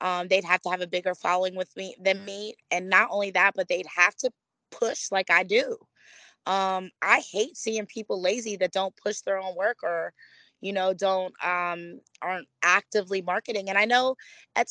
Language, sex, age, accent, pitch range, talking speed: English, female, 20-39, American, 195-245 Hz, 195 wpm